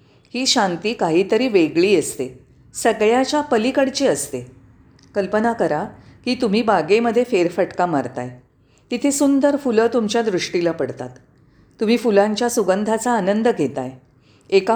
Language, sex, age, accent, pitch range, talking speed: Marathi, female, 40-59, native, 160-235 Hz, 120 wpm